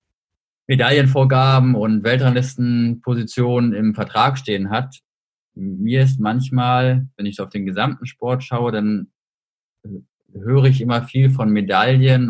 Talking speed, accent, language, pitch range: 115 wpm, German, German, 105-130 Hz